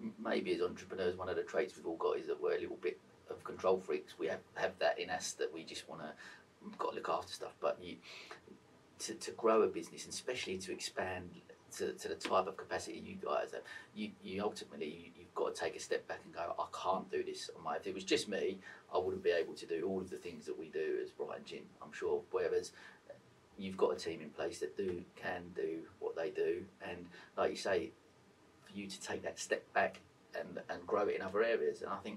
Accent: British